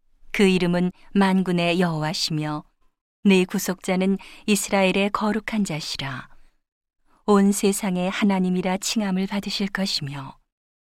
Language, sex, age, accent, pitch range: Korean, female, 40-59, native, 170-200 Hz